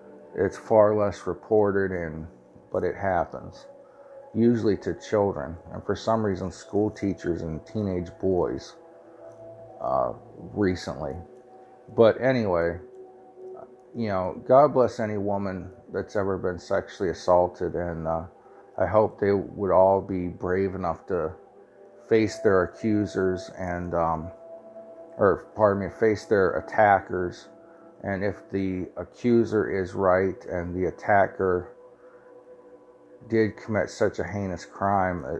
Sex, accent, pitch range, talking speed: male, American, 90-125 Hz, 120 wpm